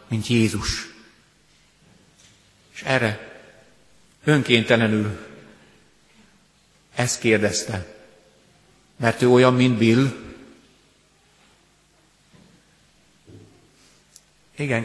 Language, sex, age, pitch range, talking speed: Hungarian, male, 50-69, 105-130 Hz, 55 wpm